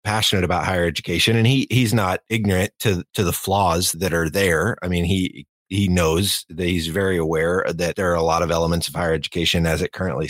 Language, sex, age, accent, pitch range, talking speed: English, male, 30-49, American, 85-95 Hz, 220 wpm